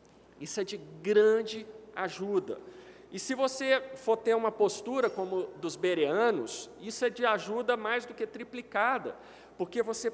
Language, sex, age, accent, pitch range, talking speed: Portuguese, male, 50-69, Brazilian, 185-275 Hz, 155 wpm